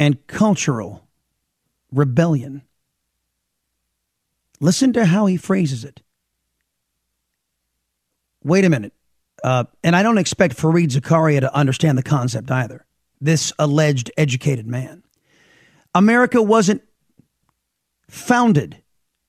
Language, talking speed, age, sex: English, 95 wpm, 40-59, male